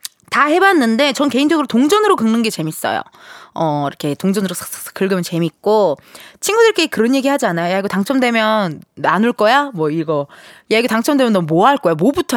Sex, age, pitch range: female, 20-39, 190-300 Hz